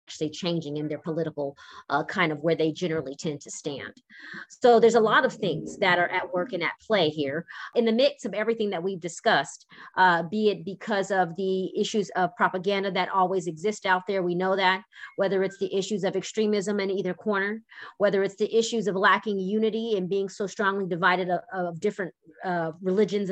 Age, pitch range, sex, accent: 30-49, 180-220 Hz, female, American